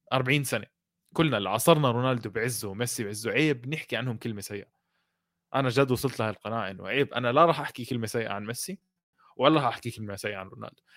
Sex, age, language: male, 20-39, Arabic